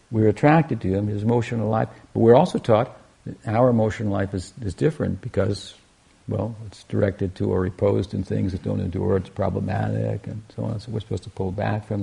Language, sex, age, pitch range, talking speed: English, male, 60-79, 95-120 Hz, 210 wpm